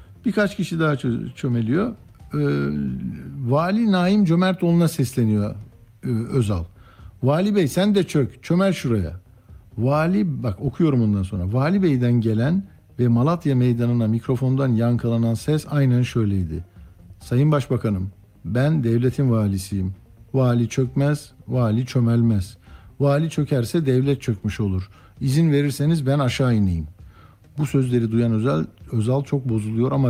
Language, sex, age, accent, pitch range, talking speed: Turkish, male, 60-79, native, 110-140 Hz, 120 wpm